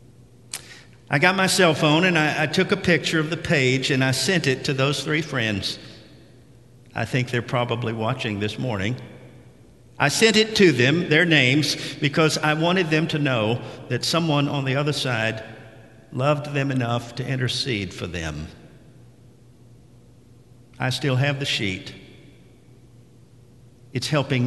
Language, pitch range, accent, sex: English, 120-140 Hz, American, male